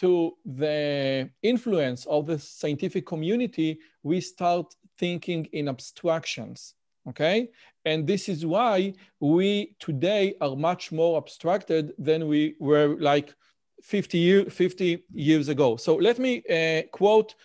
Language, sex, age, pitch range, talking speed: Hebrew, male, 40-59, 155-200 Hz, 125 wpm